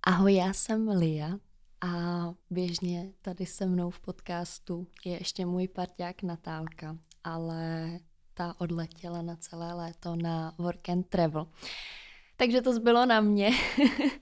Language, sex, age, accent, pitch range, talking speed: Czech, female, 20-39, native, 175-210 Hz, 130 wpm